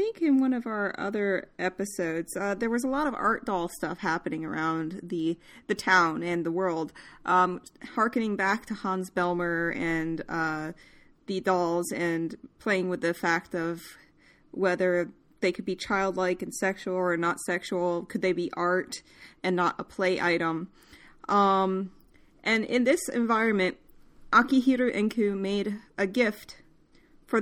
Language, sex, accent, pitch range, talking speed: English, female, American, 180-225 Hz, 155 wpm